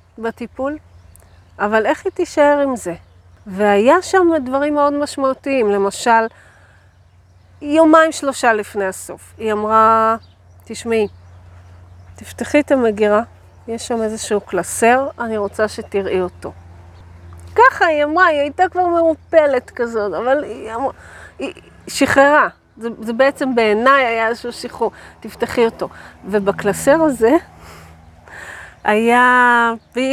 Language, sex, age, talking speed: Hebrew, female, 40-59, 115 wpm